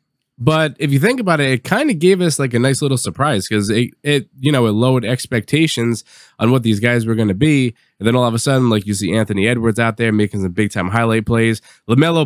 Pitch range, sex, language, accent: 110-145 Hz, male, English, American